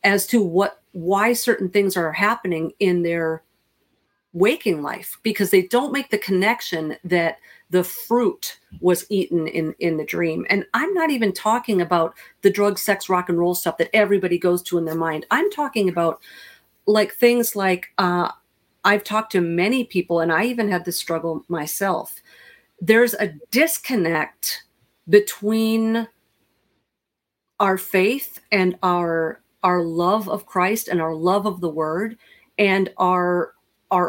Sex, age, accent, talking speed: female, 40-59, American, 155 wpm